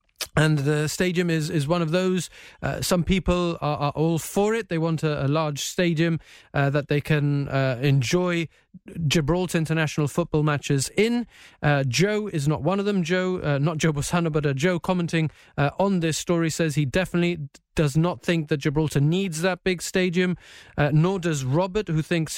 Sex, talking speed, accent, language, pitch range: male, 190 wpm, British, English, 150-180 Hz